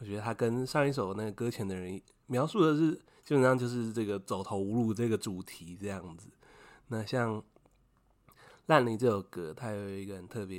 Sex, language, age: male, Chinese, 20-39